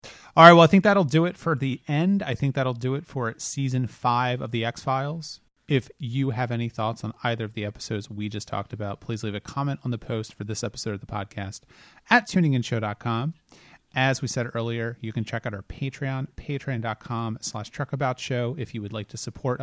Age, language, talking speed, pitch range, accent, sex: 30-49, English, 215 wpm, 110-135 Hz, American, male